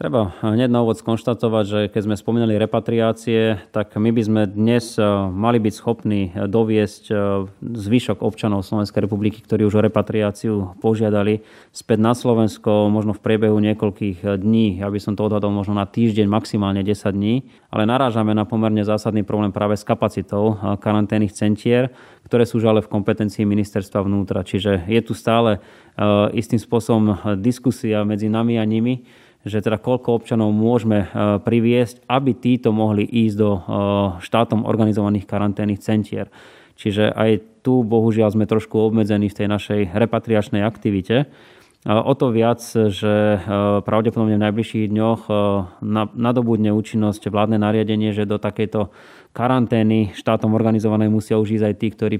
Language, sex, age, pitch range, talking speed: Slovak, male, 20-39, 105-115 Hz, 145 wpm